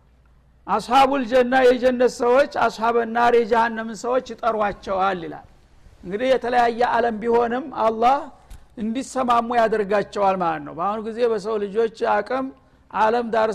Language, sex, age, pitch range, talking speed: Amharic, male, 60-79, 215-250 Hz, 110 wpm